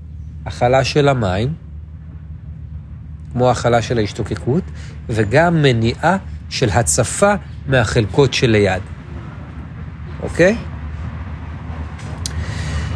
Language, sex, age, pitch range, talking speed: Hebrew, male, 40-59, 90-140 Hz, 75 wpm